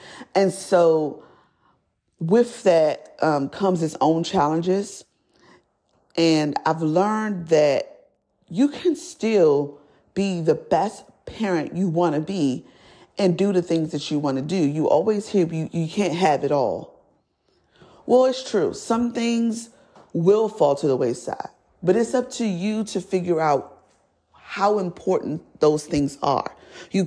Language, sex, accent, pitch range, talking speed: English, female, American, 160-225 Hz, 145 wpm